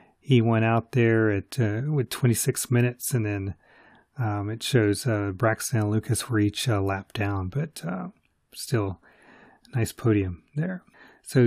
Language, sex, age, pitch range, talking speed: English, male, 30-49, 105-125 Hz, 160 wpm